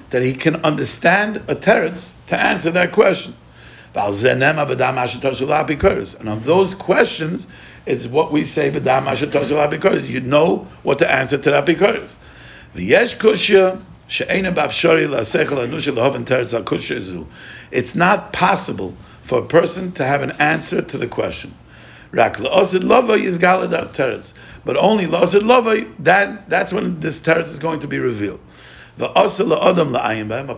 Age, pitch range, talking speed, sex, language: 50-69, 130-185 Hz, 100 wpm, male, English